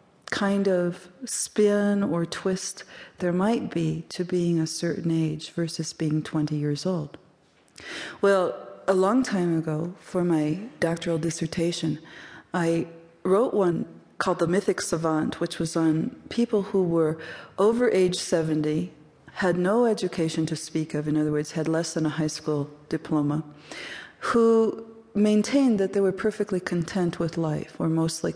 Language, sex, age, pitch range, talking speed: English, female, 40-59, 160-195 Hz, 150 wpm